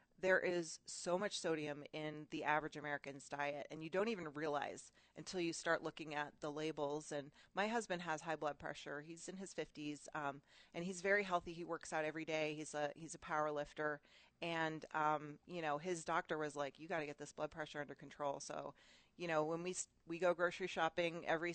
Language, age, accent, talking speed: English, 30-49, American, 210 wpm